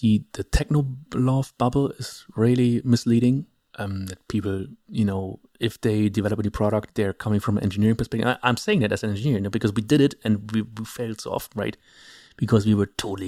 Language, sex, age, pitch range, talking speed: English, male, 30-49, 105-125 Hz, 220 wpm